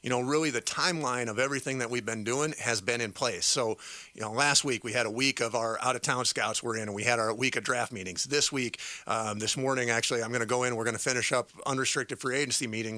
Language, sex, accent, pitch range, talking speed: English, male, American, 115-135 Hz, 275 wpm